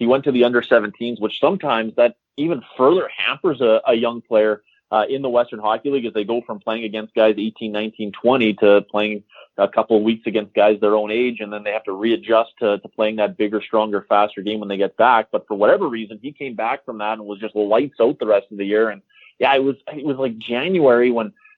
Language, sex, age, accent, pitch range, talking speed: English, male, 30-49, American, 110-125 Hz, 240 wpm